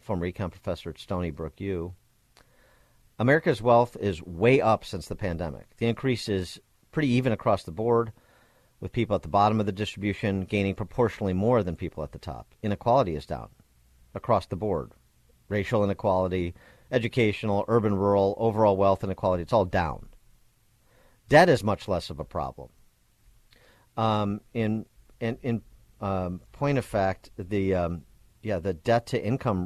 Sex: male